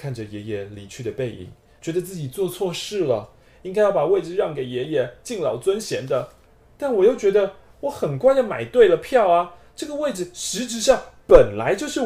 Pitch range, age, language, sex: 125-195 Hz, 20-39, Chinese, male